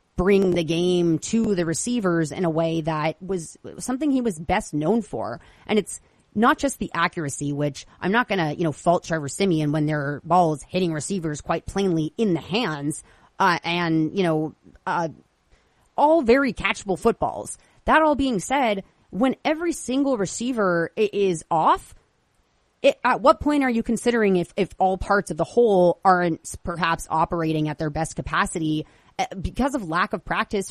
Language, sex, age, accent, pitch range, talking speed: English, female, 30-49, American, 165-220 Hz, 170 wpm